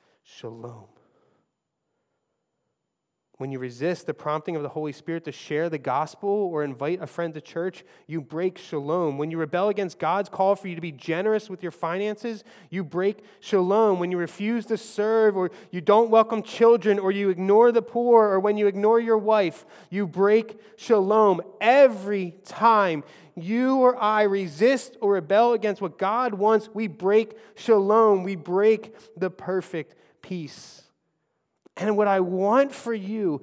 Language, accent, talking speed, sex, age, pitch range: English, American, 160 wpm, male, 20-39, 175-220 Hz